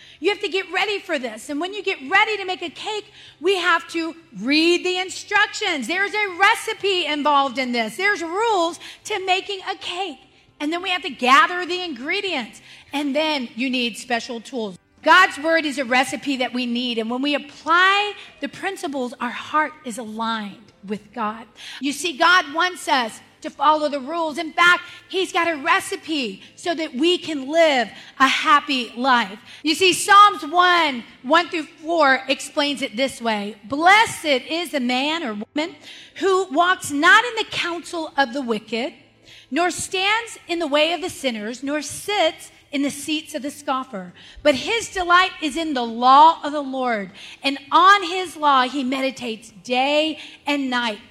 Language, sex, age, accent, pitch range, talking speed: English, female, 30-49, American, 265-360 Hz, 180 wpm